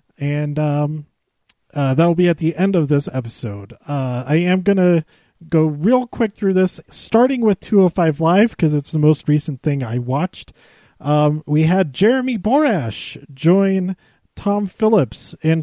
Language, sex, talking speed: English, male, 155 wpm